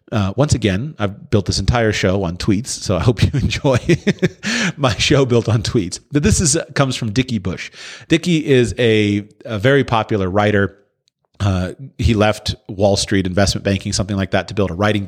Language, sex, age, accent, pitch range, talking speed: English, male, 40-59, American, 100-135 Hz, 195 wpm